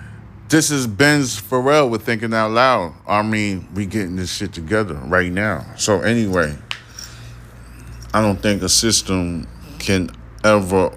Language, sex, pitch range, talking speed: English, male, 80-95 Hz, 140 wpm